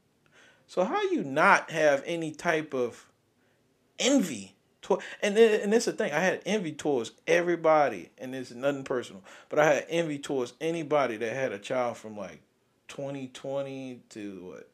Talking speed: 160 wpm